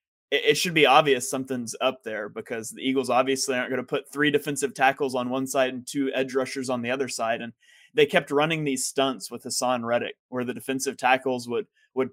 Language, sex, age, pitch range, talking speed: English, male, 20-39, 125-145 Hz, 220 wpm